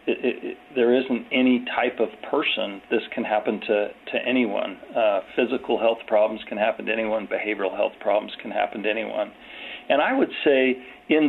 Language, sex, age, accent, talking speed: English, male, 40-59, American, 170 wpm